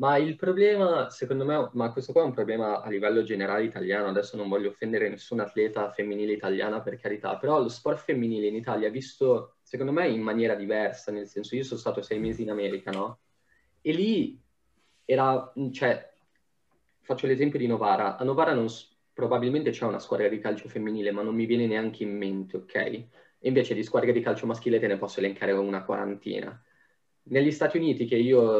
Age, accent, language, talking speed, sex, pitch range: 20-39, native, Italian, 190 wpm, male, 105-130 Hz